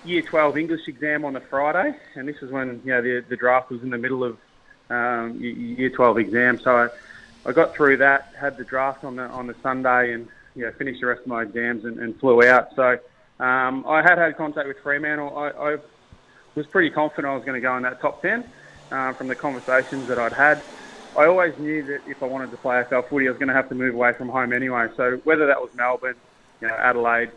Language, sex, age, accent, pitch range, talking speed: English, male, 20-39, Australian, 120-140 Hz, 245 wpm